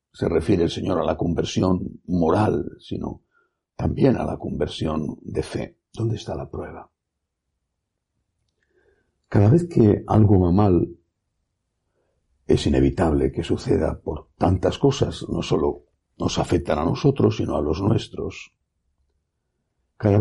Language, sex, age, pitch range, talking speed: Spanish, male, 60-79, 80-115 Hz, 130 wpm